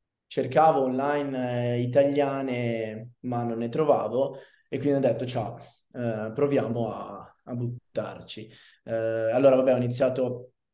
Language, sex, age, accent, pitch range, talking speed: Italian, male, 20-39, native, 110-130 Hz, 110 wpm